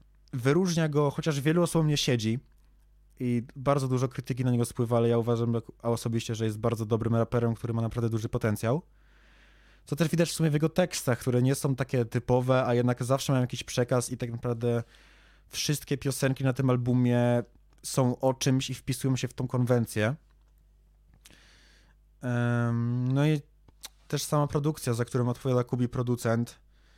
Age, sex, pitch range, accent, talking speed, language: 20-39, male, 115-140 Hz, native, 165 wpm, Polish